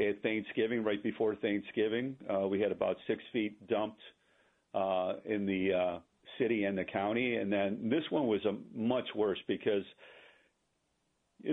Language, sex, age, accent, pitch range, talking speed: English, male, 50-69, American, 100-120 Hz, 155 wpm